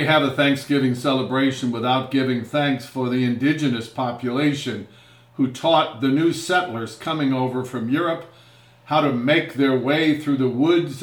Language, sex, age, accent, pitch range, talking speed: English, male, 50-69, American, 120-150 Hz, 150 wpm